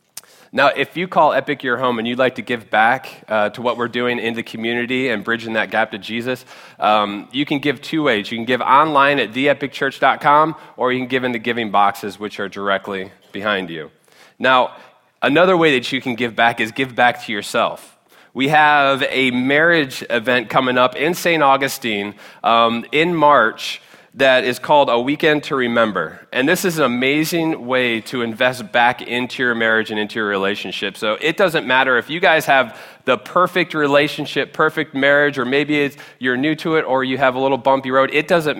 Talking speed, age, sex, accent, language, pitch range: 200 wpm, 20-39, male, American, English, 115-150 Hz